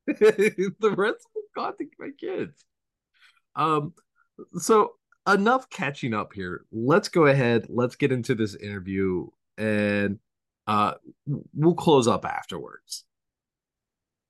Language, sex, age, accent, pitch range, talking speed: English, male, 30-49, American, 110-155 Hz, 105 wpm